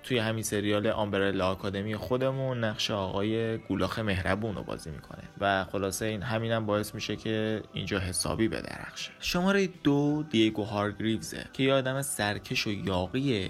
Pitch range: 100-130 Hz